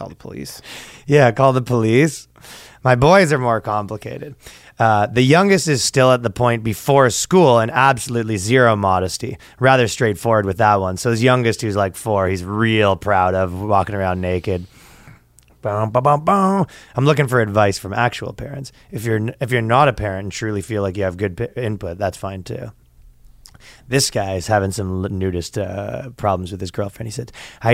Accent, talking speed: American, 180 wpm